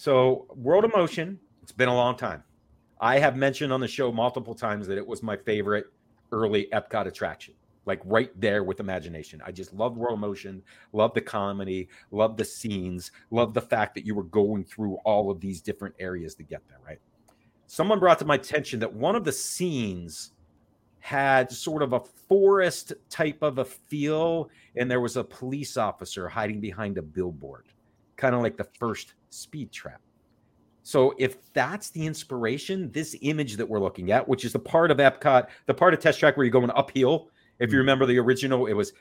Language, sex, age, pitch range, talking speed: English, male, 40-59, 105-150 Hz, 195 wpm